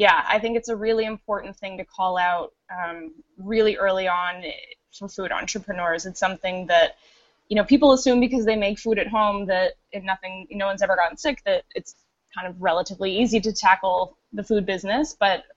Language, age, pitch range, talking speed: English, 10-29, 180-220 Hz, 195 wpm